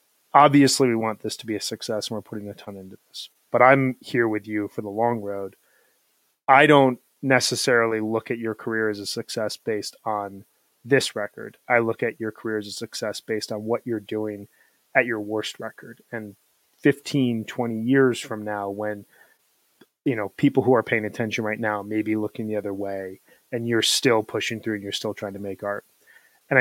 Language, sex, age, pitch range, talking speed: English, male, 30-49, 105-125 Hz, 205 wpm